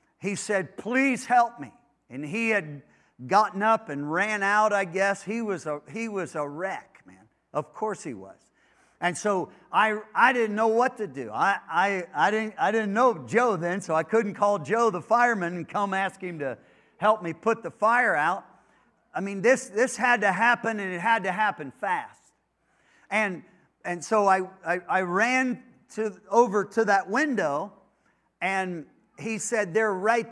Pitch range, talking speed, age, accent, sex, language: 175-225 Hz, 185 wpm, 50-69, American, male, English